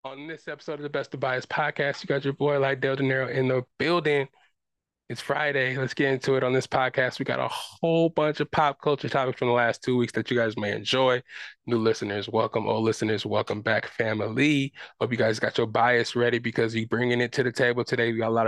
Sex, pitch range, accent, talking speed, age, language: male, 115-135 Hz, American, 245 wpm, 20-39, English